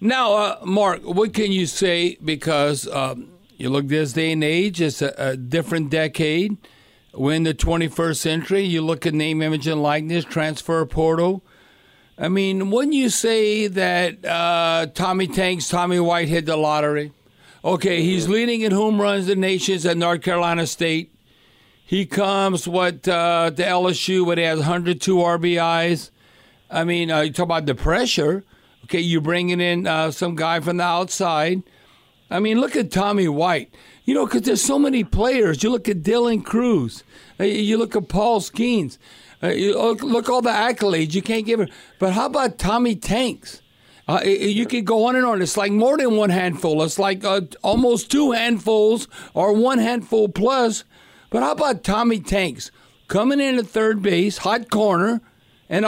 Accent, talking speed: American, 170 wpm